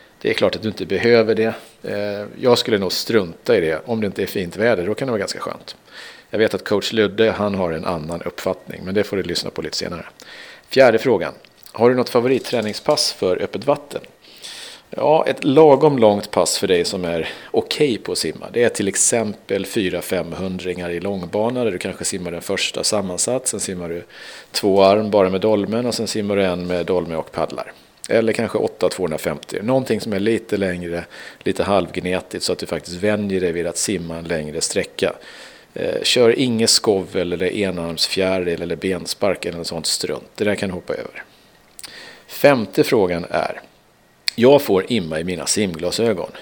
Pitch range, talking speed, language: 90-115 Hz, 185 wpm, Swedish